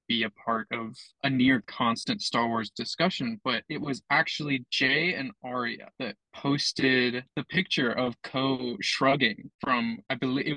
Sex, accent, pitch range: male, American, 125-150 Hz